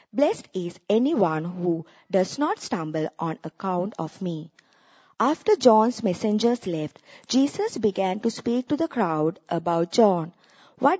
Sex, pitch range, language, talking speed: female, 170-250 Hz, English, 135 wpm